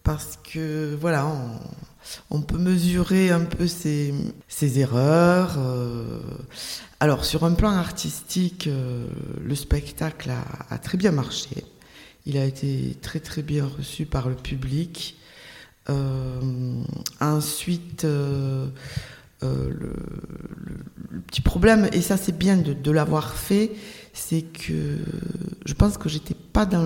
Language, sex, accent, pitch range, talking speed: French, female, French, 145-175 Hz, 130 wpm